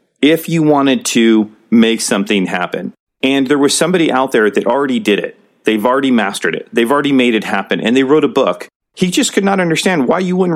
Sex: male